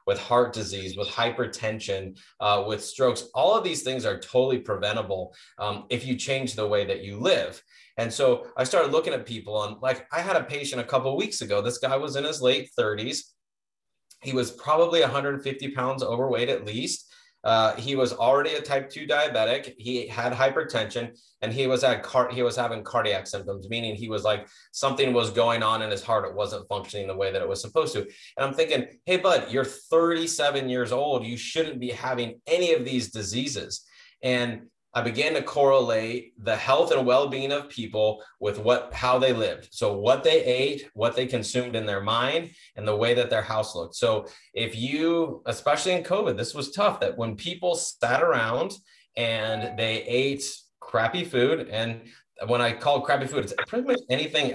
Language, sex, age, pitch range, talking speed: English, male, 20-39, 115-150 Hz, 195 wpm